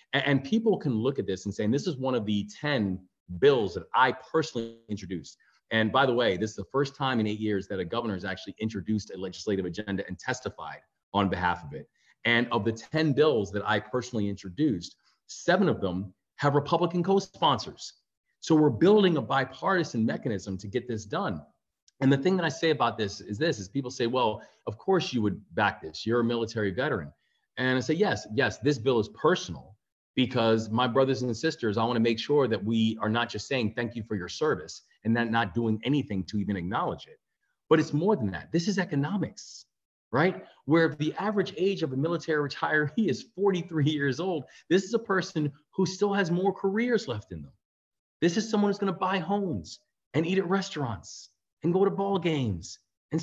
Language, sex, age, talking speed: English, male, 30-49, 205 wpm